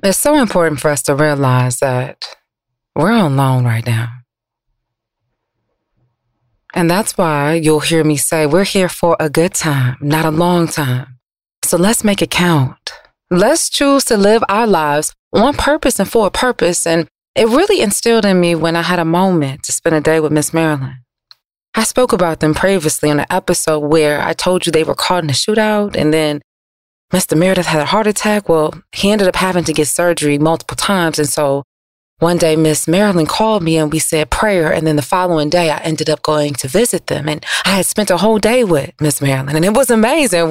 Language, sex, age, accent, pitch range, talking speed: English, female, 20-39, American, 150-205 Hz, 205 wpm